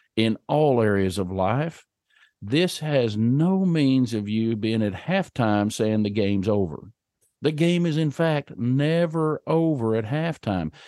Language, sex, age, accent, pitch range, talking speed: English, male, 50-69, American, 105-155 Hz, 150 wpm